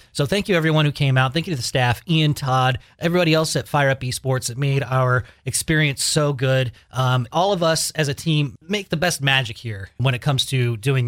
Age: 30-49